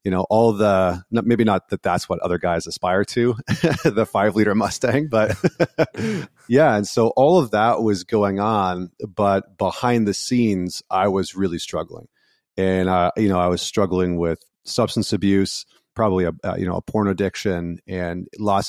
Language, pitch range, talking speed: English, 90-105 Hz, 175 wpm